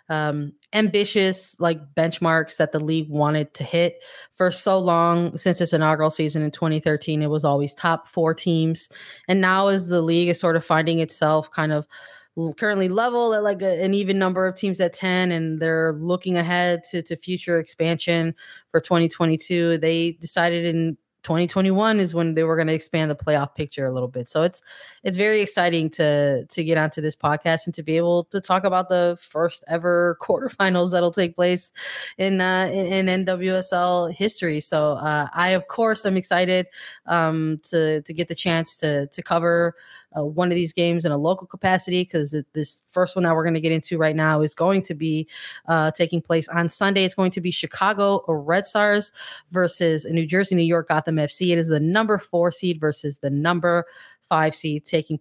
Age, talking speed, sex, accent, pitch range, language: 20-39, 195 wpm, female, American, 160-185 Hz, English